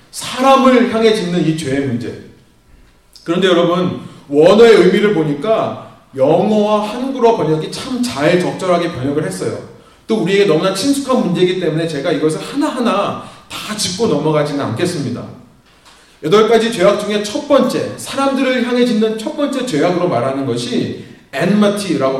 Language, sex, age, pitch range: Korean, male, 30-49, 140-220 Hz